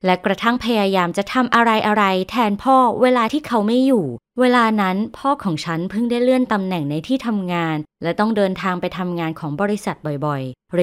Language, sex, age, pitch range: Thai, female, 20-39, 170-245 Hz